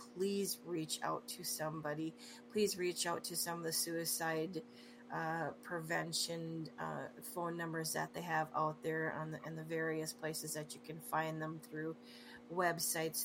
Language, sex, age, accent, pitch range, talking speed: English, female, 30-49, American, 150-165 Hz, 160 wpm